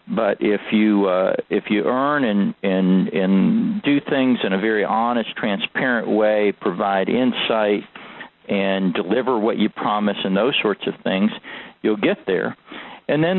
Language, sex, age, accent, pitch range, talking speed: English, male, 50-69, American, 105-155 Hz, 155 wpm